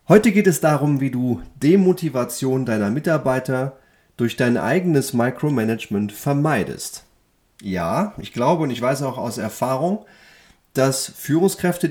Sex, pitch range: male, 130-180 Hz